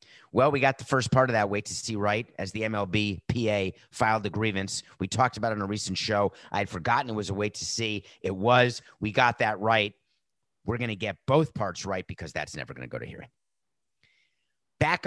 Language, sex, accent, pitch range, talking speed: English, male, American, 100-125 Hz, 230 wpm